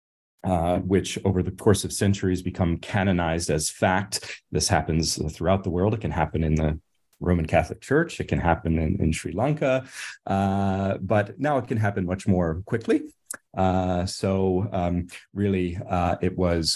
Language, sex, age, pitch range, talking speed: English, male, 30-49, 80-95 Hz, 170 wpm